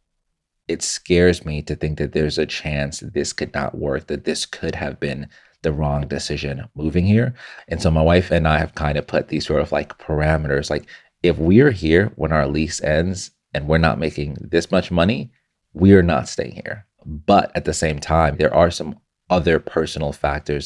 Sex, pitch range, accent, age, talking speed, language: male, 75-80 Hz, American, 30-49, 200 wpm, English